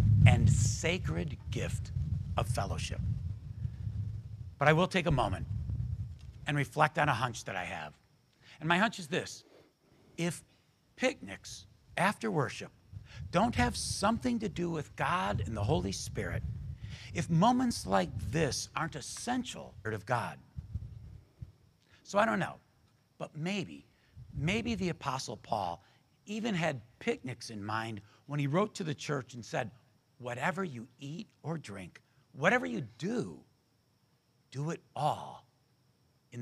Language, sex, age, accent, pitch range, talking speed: English, male, 60-79, American, 115-165 Hz, 135 wpm